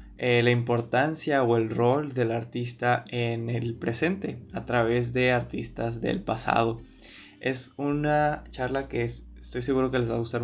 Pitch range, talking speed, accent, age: 115-130 Hz, 160 wpm, Mexican, 20-39